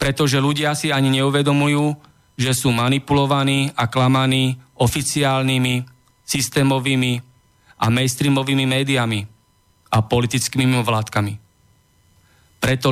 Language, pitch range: Slovak, 105-135 Hz